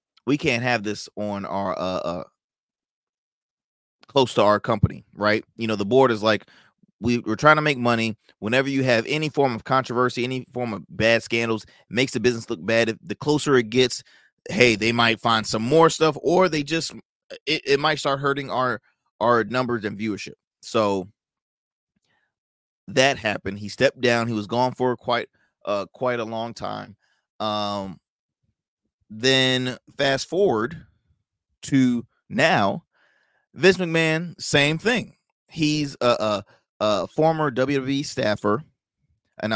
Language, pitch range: English, 105-130 Hz